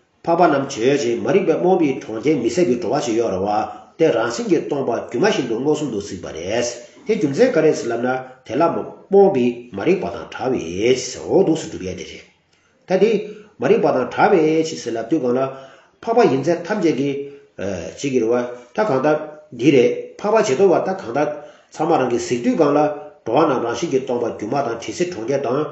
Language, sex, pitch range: English, male, 115-160 Hz